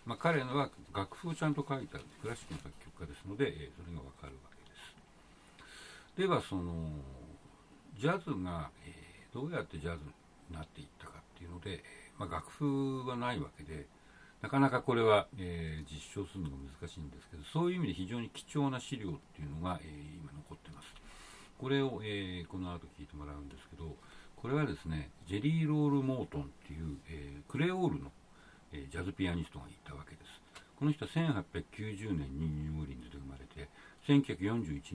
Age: 60-79